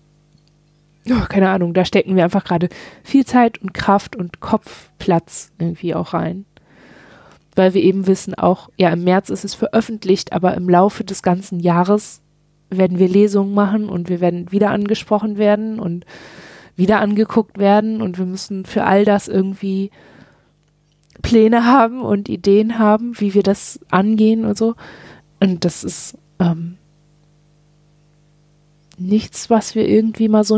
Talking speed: 145 wpm